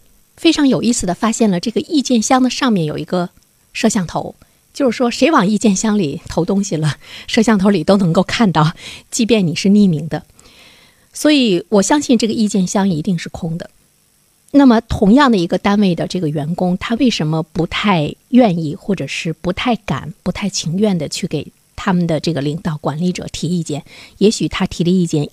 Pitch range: 165-225 Hz